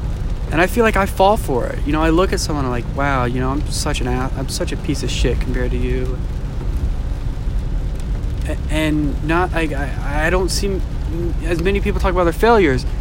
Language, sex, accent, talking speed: English, male, American, 210 wpm